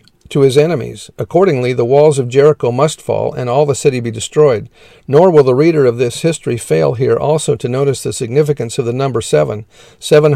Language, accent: English, American